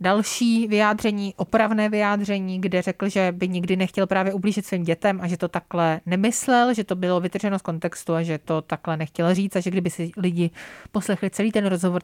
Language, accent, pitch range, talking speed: Czech, native, 175-205 Hz, 200 wpm